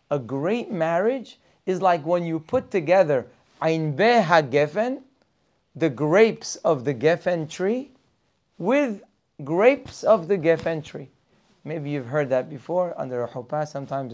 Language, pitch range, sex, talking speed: English, 135-175 Hz, male, 130 wpm